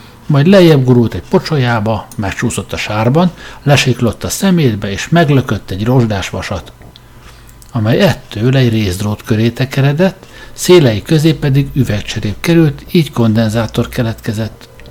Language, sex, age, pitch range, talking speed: Hungarian, male, 60-79, 115-145 Hz, 120 wpm